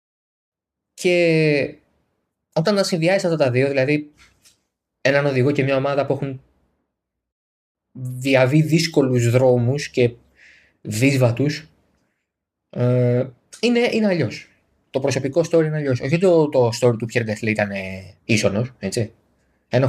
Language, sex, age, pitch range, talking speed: Greek, male, 20-39, 115-155 Hz, 120 wpm